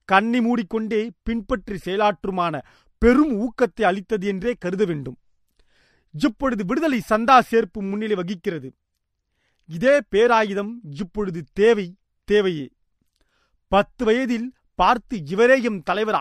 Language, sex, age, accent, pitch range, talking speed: Tamil, male, 40-59, native, 175-235 Hz, 100 wpm